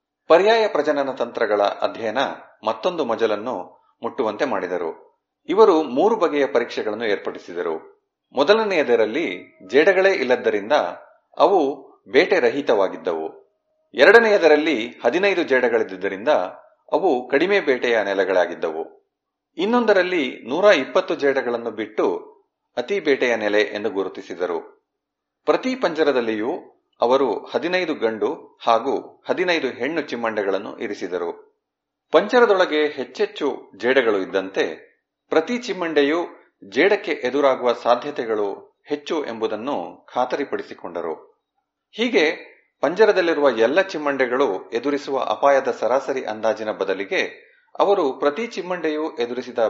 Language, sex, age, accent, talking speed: Kannada, male, 30-49, native, 85 wpm